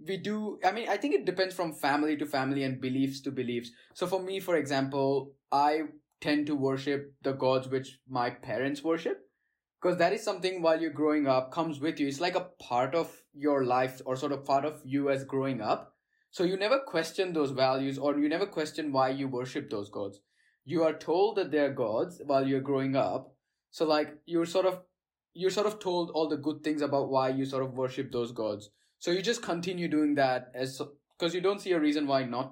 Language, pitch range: Slovak, 130-165 Hz